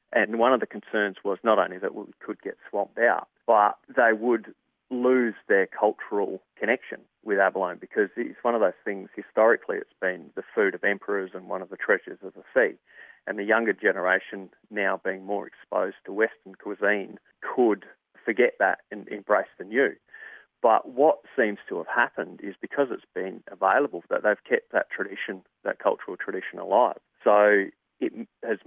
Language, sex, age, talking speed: English, male, 40-59, 180 wpm